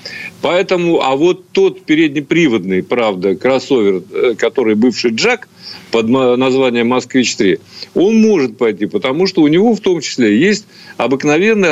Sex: male